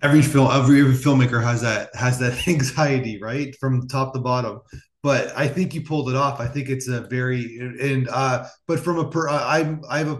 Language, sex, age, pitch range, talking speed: English, male, 30-49, 120-140 Hz, 210 wpm